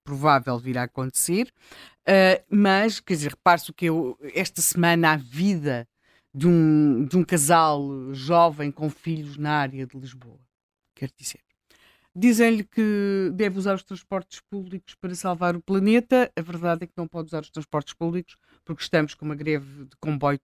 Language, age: Portuguese, 50-69